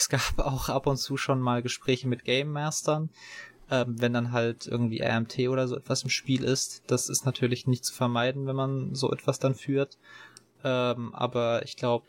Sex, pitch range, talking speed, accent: male, 120-135 Hz, 200 wpm, German